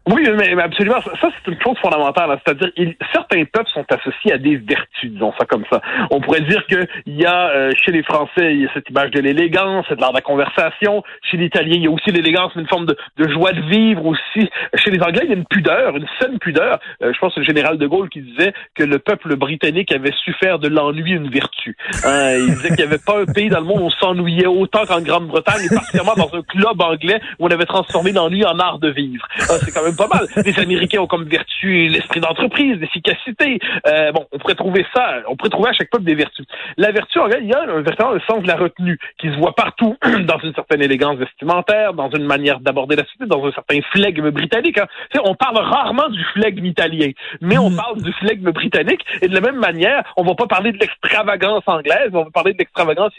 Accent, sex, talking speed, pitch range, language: French, male, 255 wpm, 155-205 Hz, French